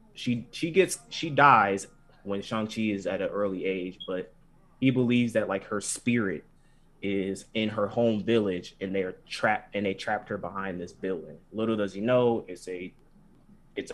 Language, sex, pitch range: English, male, 95-115 Hz